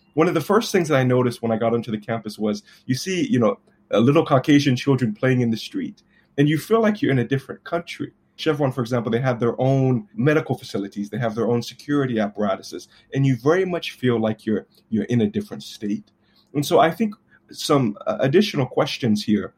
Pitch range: 110-145 Hz